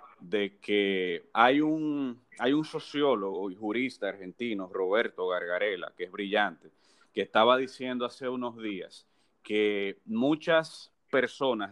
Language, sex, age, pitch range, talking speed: Spanish, male, 30-49, 105-135 Hz, 125 wpm